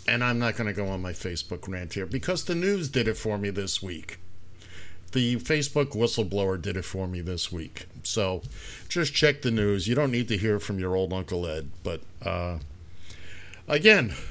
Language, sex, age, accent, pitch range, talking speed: English, male, 50-69, American, 95-140 Hz, 200 wpm